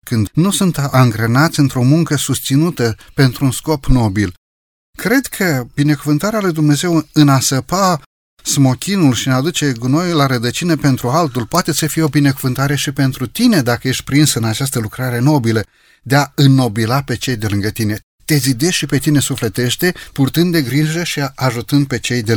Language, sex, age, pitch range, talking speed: Romanian, male, 30-49, 120-150 Hz, 170 wpm